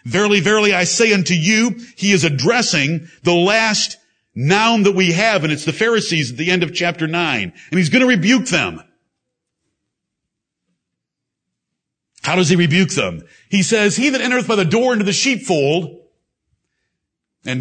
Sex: male